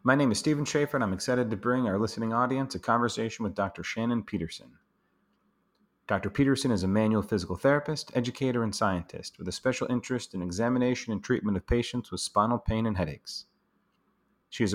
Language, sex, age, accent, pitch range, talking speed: English, male, 30-49, American, 95-125 Hz, 185 wpm